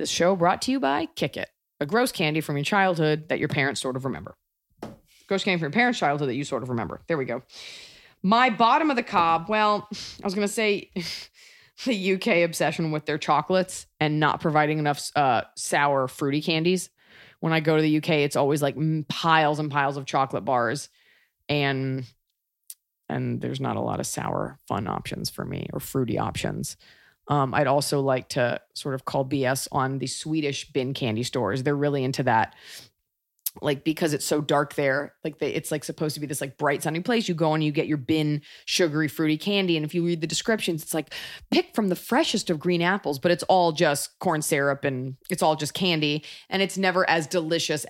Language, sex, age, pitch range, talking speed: English, female, 20-39, 140-175 Hz, 210 wpm